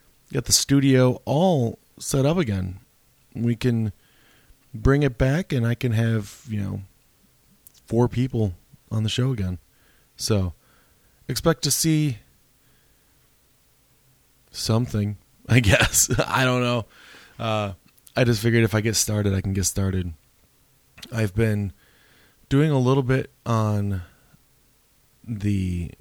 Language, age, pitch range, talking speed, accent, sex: English, 20-39, 95-125 Hz, 125 wpm, American, male